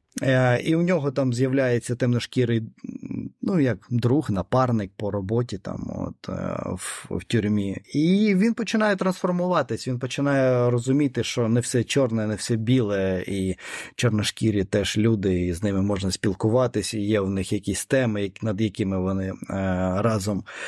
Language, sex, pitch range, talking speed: Ukrainian, male, 110-145 Hz, 145 wpm